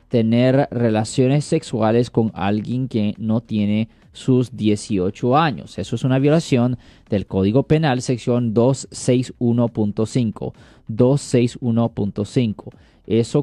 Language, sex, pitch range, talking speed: Spanish, male, 110-135 Hz, 100 wpm